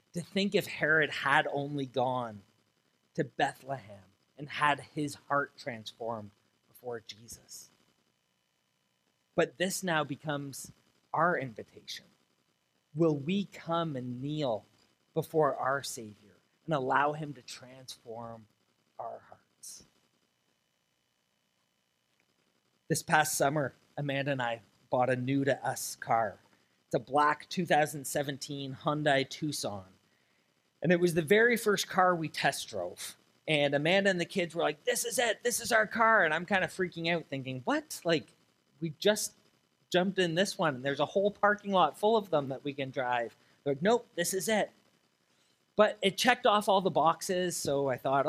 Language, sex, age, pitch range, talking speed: English, male, 30-49, 130-175 Hz, 155 wpm